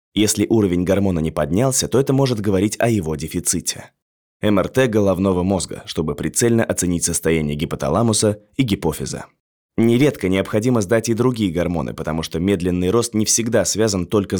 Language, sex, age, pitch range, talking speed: Russian, male, 20-39, 90-115 Hz, 150 wpm